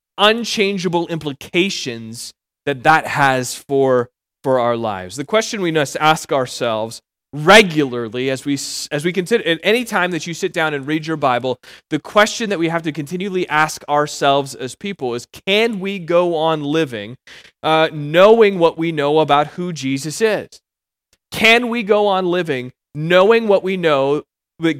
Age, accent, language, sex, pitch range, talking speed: 30-49, American, English, male, 140-180 Hz, 165 wpm